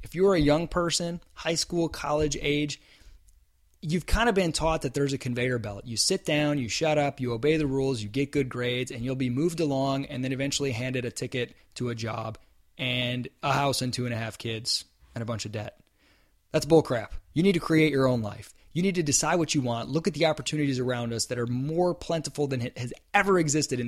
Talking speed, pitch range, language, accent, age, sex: 235 wpm, 120-160 Hz, English, American, 20-39, male